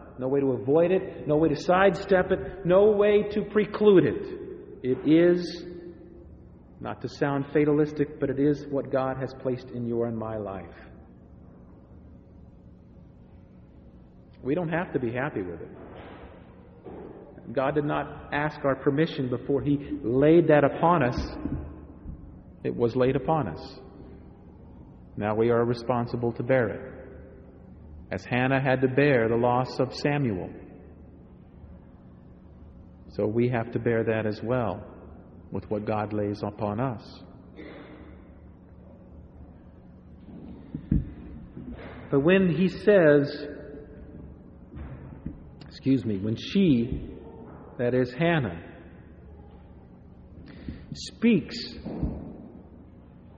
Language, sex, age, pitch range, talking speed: English, male, 40-59, 90-145 Hz, 110 wpm